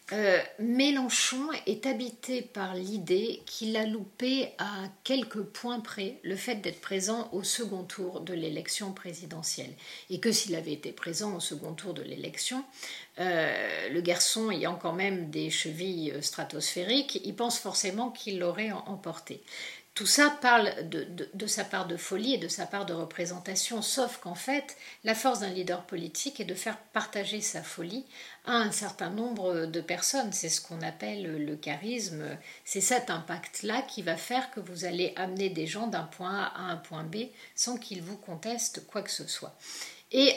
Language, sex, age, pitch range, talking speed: French, female, 50-69, 175-230 Hz, 175 wpm